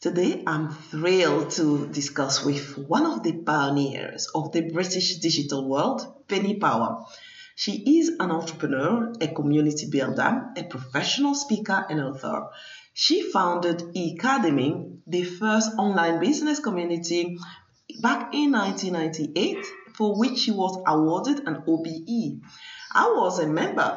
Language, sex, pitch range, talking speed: English, female, 150-220 Hz, 130 wpm